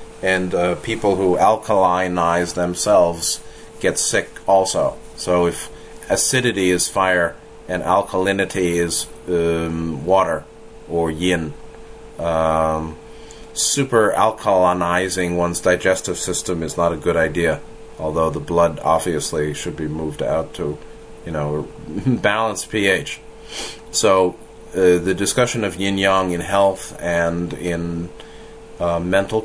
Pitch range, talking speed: 85-100 Hz, 115 wpm